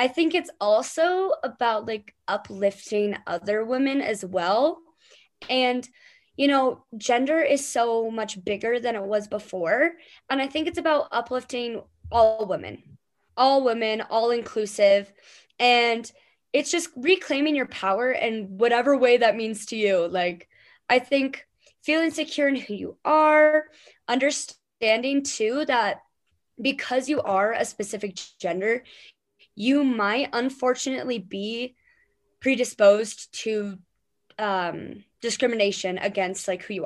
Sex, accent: female, American